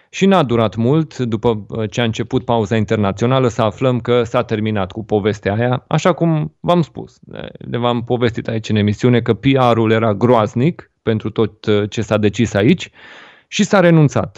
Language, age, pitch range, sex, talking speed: Romanian, 30-49, 115-150 Hz, male, 170 wpm